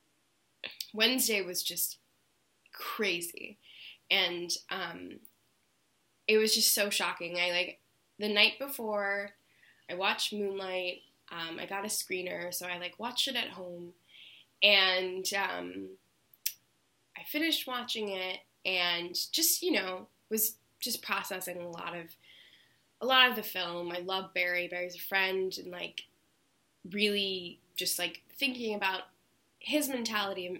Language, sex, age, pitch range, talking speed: English, female, 10-29, 175-220 Hz, 130 wpm